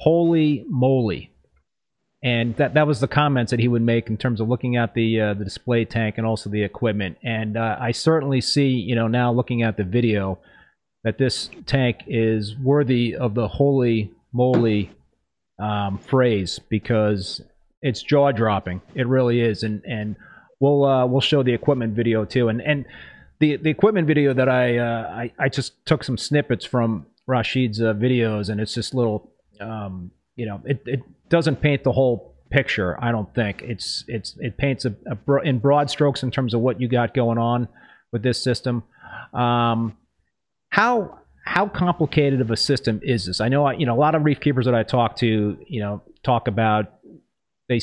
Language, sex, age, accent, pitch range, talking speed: English, male, 30-49, American, 110-135 Hz, 190 wpm